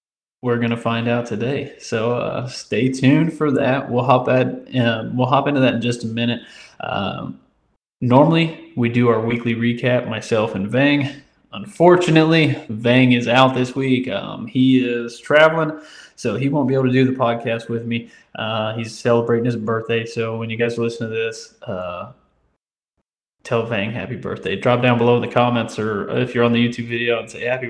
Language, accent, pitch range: English, American, 115-130 Hz